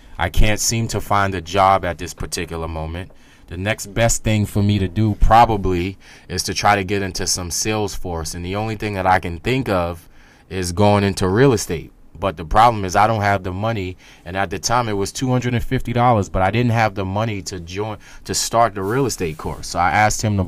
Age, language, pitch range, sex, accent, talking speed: 20-39, English, 90-105 Hz, male, American, 230 wpm